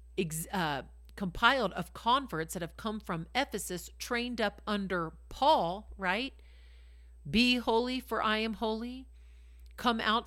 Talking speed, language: 130 wpm, English